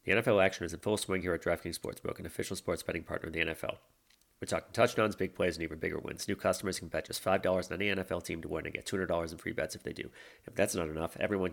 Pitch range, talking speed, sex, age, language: 80-95 Hz, 280 wpm, male, 30-49, English